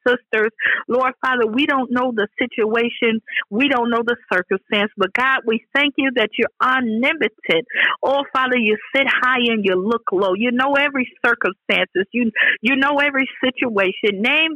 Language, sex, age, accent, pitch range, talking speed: English, female, 50-69, American, 225-275 Hz, 165 wpm